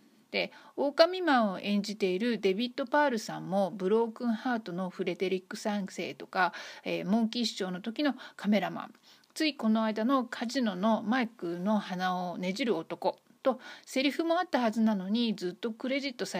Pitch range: 185-250 Hz